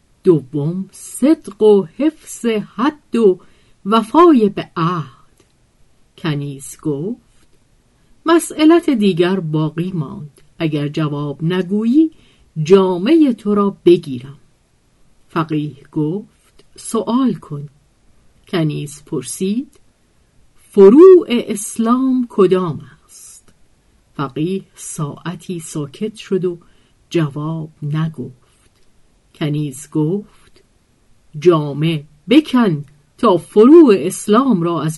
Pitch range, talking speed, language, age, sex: 150-230 Hz, 80 wpm, Persian, 50-69, female